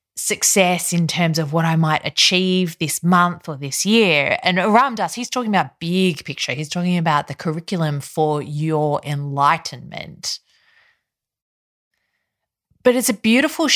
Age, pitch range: 20-39, 160-220 Hz